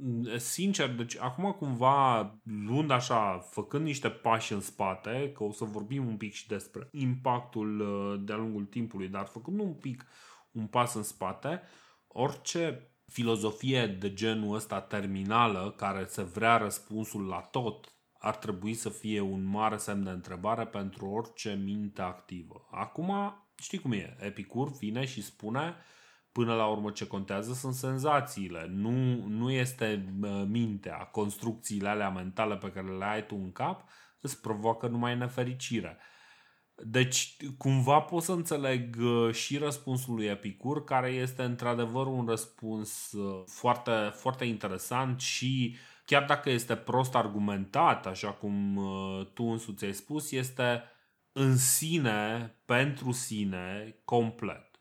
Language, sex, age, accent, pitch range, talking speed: Romanian, male, 30-49, native, 105-130 Hz, 135 wpm